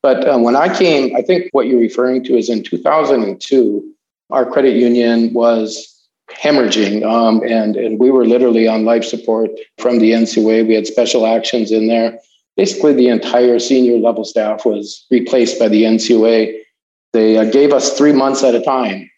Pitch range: 115-130 Hz